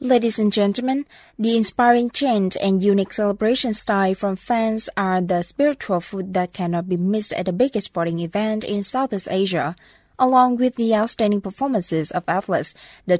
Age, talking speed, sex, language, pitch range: 20-39, 165 wpm, female, Vietnamese, 185-230 Hz